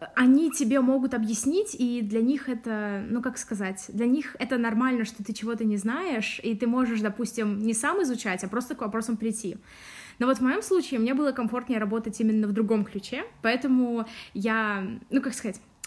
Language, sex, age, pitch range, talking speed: Russian, female, 20-39, 220-260 Hz, 190 wpm